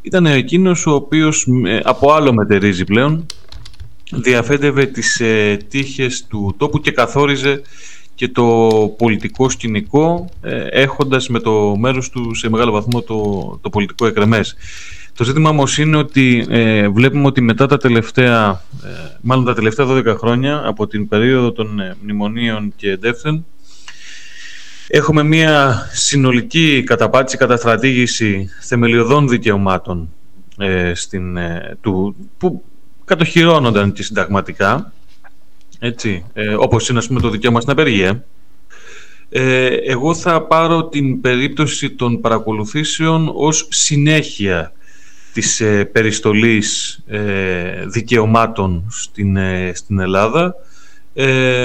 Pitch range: 105-145 Hz